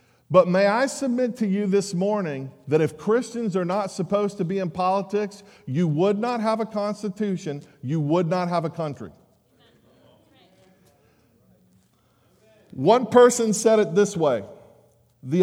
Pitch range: 155-215 Hz